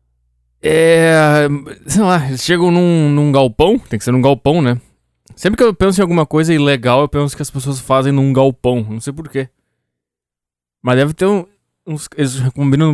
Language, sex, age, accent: Portuguese, male, 20-39, Brazilian